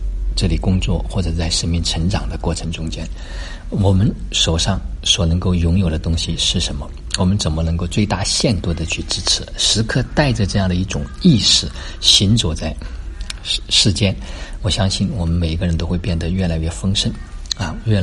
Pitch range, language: 80-95 Hz, Chinese